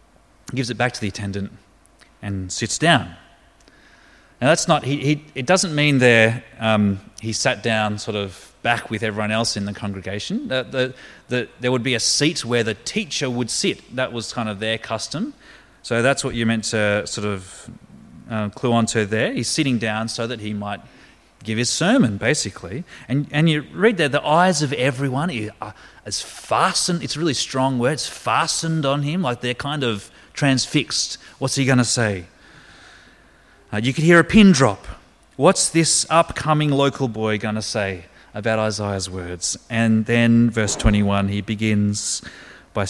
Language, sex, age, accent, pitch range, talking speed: English, male, 30-49, Australian, 105-135 Hz, 180 wpm